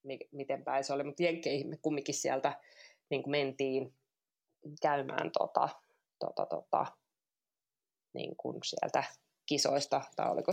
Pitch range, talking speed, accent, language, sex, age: 135-160 Hz, 110 wpm, native, Finnish, female, 20-39